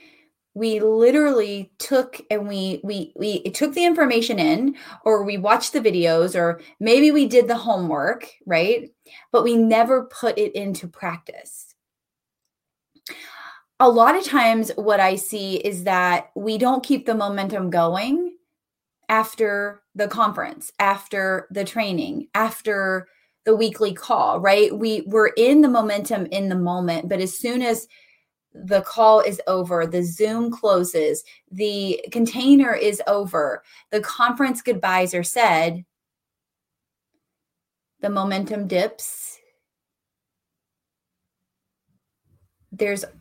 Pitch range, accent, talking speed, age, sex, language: 195-235 Hz, American, 120 wpm, 20-39, female, English